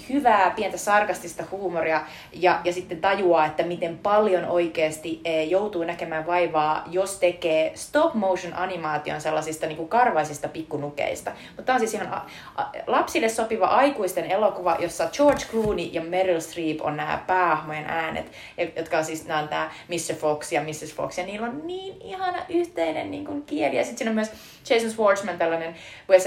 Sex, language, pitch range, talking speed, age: female, Finnish, 155-200 Hz, 165 wpm, 30-49